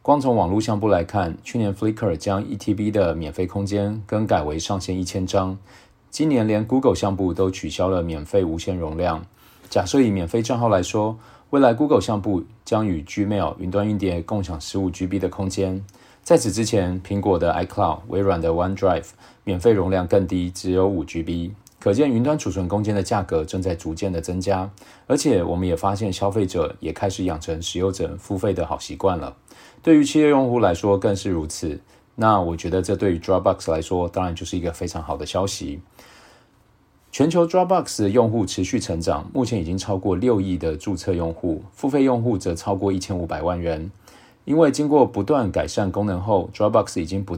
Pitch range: 90-105 Hz